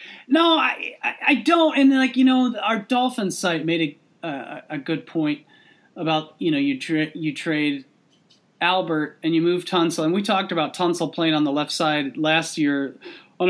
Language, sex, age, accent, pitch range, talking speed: English, male, 30-49, American, 170-220 Hz, 190 wpm